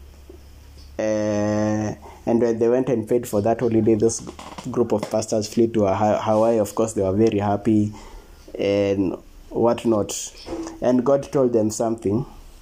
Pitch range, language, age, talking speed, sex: 105-125 Hz, English, 20-39, 145 wpm, male